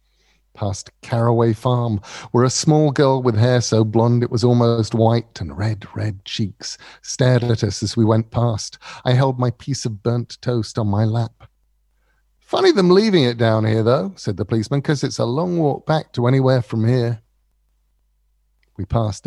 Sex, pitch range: male, 105-130 Hz